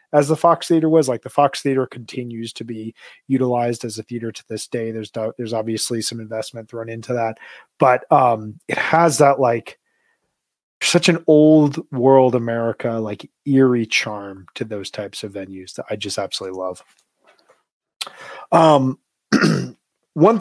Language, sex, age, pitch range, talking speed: English, male, 30-49, 115-140 Hz, 155 wpm